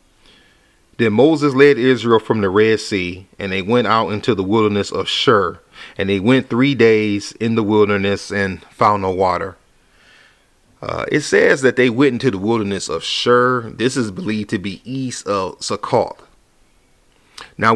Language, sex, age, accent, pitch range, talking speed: English, male, 40-59, American, 100-120 Hz, 165 wpm